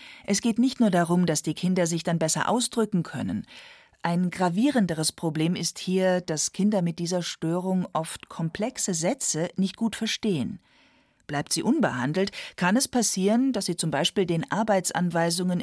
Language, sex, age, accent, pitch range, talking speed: German, female, 40-59, German, 165-205 Hz, 155 wpm